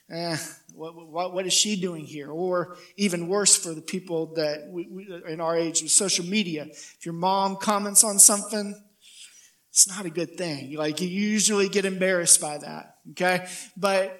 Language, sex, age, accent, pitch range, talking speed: English, male, 40-59, American, 160-195 Hz, 170 wpm